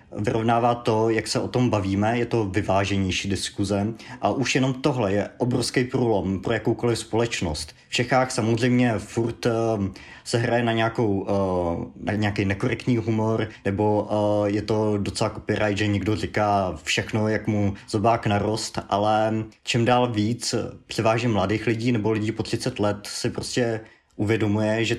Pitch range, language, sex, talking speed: 105-125 Hz, Slovak, male, 145 wpm